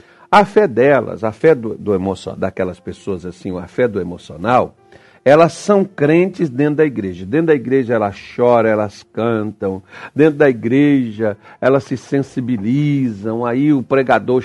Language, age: Portuguese, 60-79